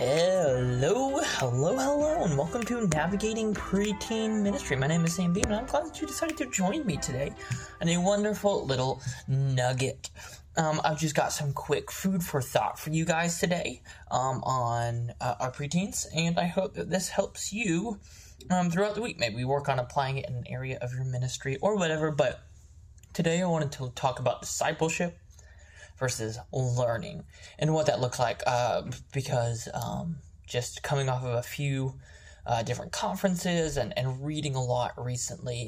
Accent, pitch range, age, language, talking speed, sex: American, 120-165 Hz, 20-39, English, 175 wpm, male